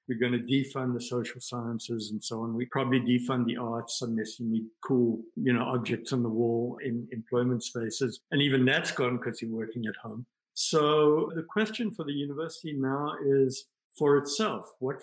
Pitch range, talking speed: 120-145 Hz, 190 wpm